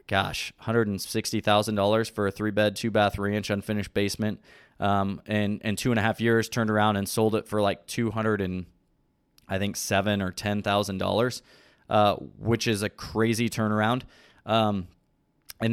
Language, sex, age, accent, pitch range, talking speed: English, male, 20-39, American, 100-115 Hz, 160 wpm